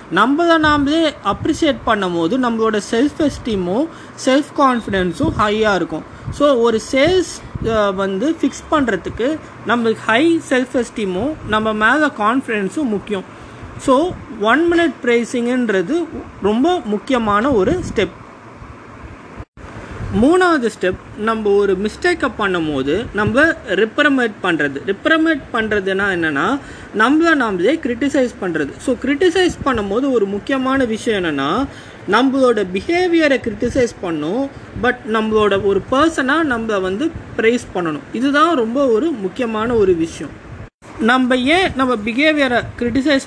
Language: Tamil